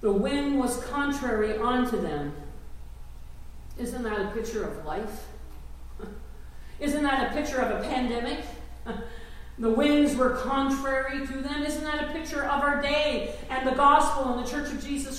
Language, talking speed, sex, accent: English, 160 wpm, female, American